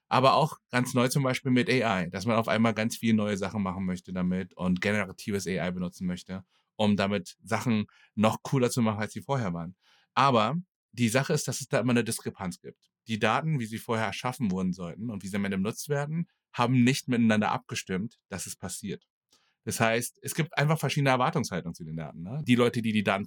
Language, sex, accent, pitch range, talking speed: German, male, German, 105-140 Hz, 215 wpm